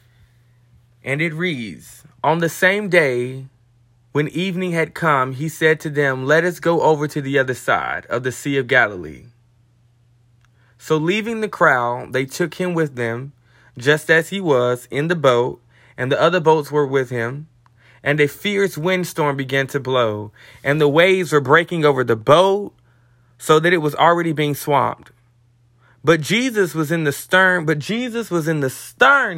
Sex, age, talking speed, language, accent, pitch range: male, 20-39, 175 wpm, English, American, 120-175 Hz